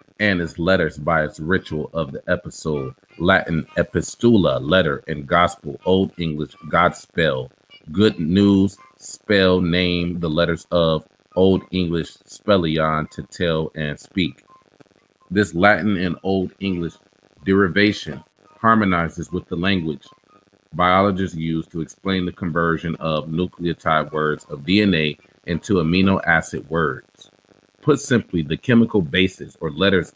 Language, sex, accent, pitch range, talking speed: English, male, American, 80-95 Hz, 125 wpm